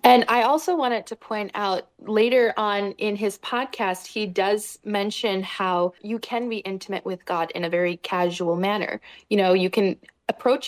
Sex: female